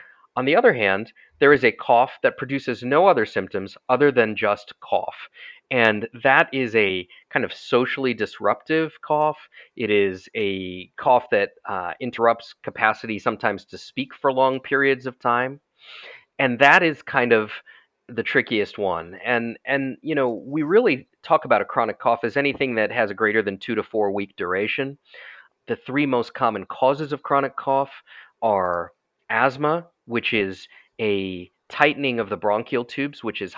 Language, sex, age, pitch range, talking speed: English, male, 30-49, 105-140 Hz, 170 wpm